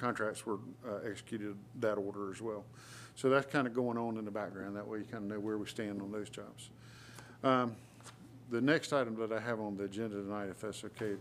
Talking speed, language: 230 wpm, English